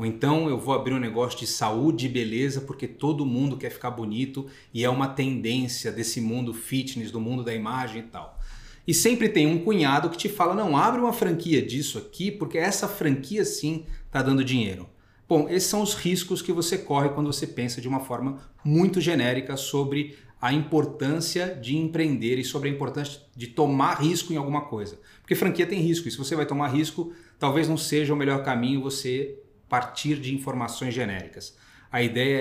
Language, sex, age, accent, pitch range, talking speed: Portuguese, male, 30-49, Brazilian, 125-160 Hz, 195 wpm